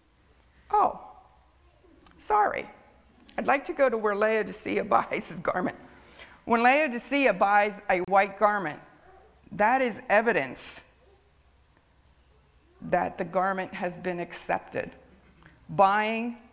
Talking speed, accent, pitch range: 100 wpm, American, 160-210 Hz